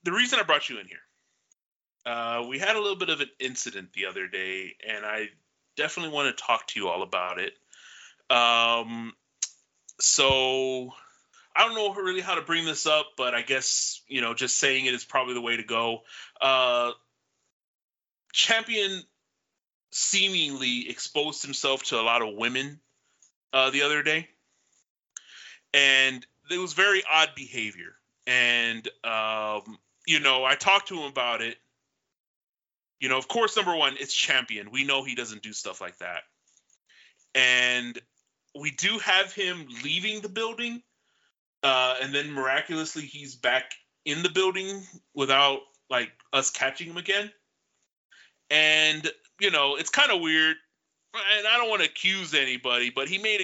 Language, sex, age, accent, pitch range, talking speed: English, male, 30-49, American, 125-170 Hz, 160 wpm